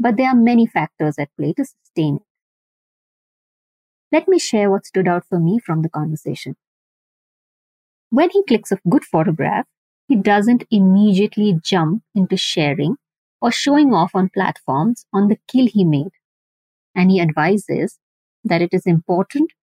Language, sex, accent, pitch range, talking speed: English, female, Indian, 165-230 Hz, 150 wpm